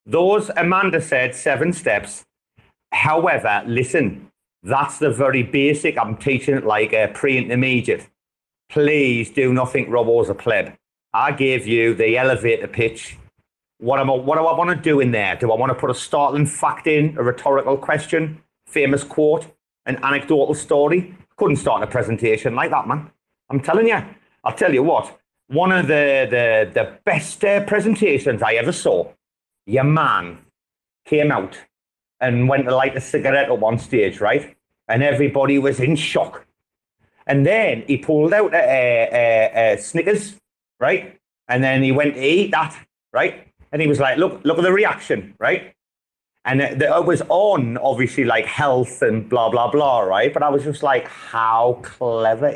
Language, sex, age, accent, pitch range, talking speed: English, male, 30-49, British, 125-160 Hz, 170 wpm